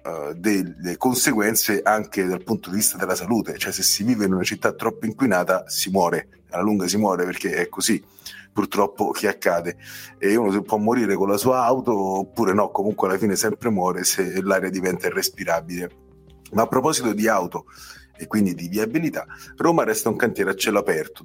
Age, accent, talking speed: 40-59, native, 190 wpm